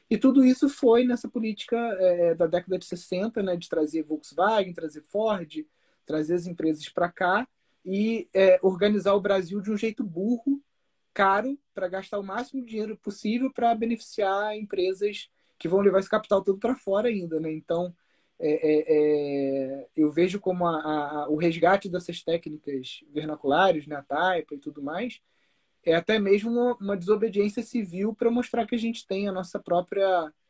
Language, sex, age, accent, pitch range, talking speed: Portuguese, male, 20-39, Brazilian, 155-210 Hz, 170 wpm